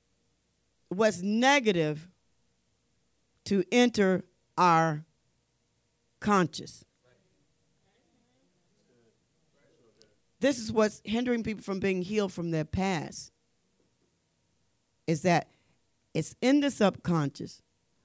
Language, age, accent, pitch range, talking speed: English, 40-59, American, 155-210 Hz, 75 wpm